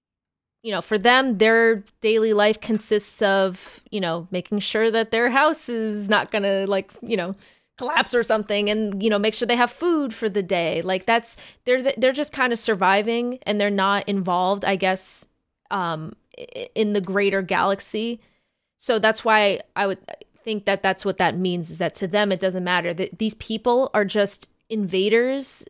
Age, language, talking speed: 20-39, English, 185 wpm